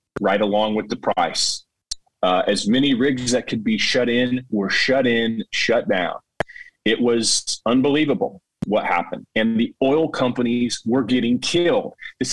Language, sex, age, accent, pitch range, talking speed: English, male, 30-49, American, 105-140 Hz, 155 wpm